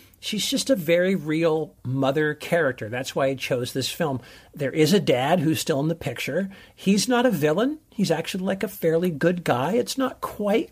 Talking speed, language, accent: 200 wpm, English, American